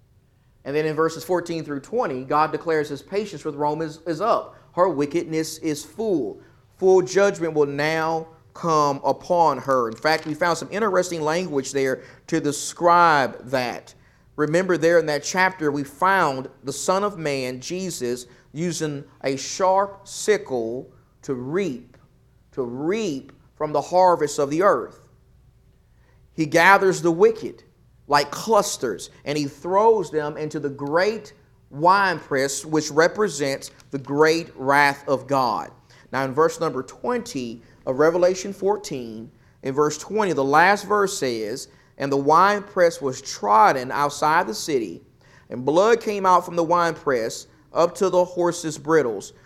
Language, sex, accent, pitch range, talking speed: English, male, American, 140-180 Hz, 145 wpm